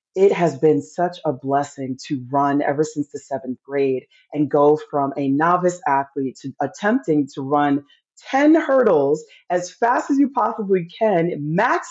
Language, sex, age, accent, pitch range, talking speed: English, female, 30-49, American, 140-180 Hz, 160 wpm